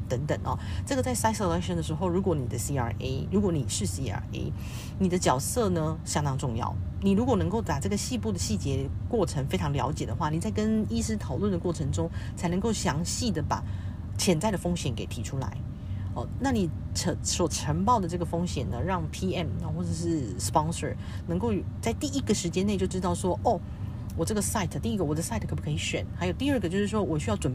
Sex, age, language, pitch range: female, 40-59, Chinese, 95-125 Hz